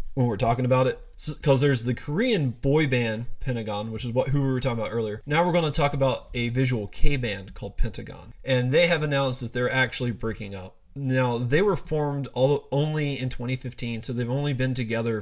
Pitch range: 115-135 Hz